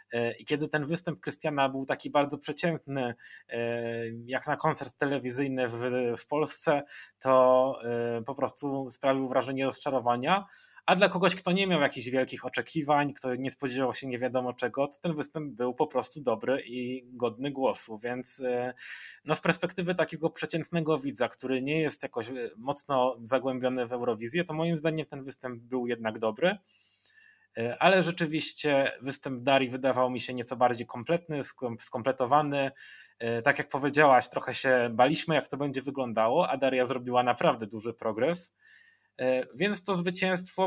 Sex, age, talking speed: male, 20-39, 150 wpm